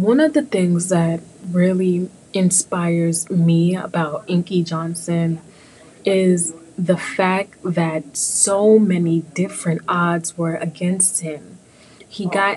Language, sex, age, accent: English, female, 20-39, American